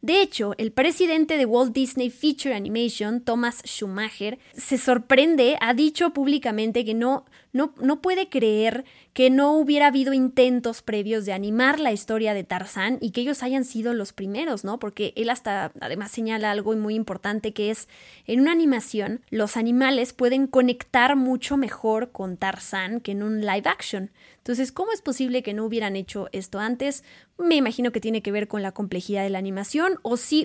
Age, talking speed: 20-39, 180 wpm